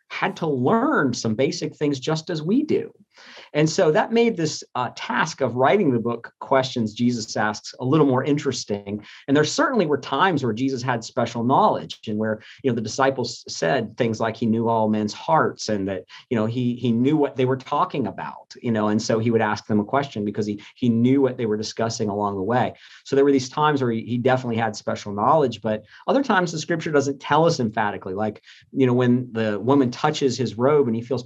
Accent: American